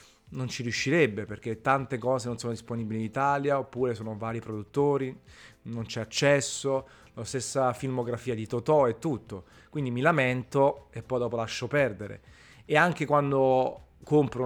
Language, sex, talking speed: Italian, male, 155 wpm